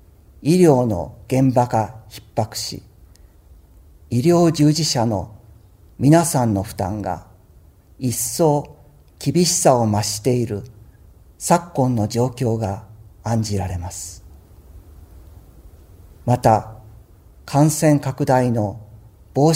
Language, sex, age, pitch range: Japanese, male, 50-69, 90-130 Hz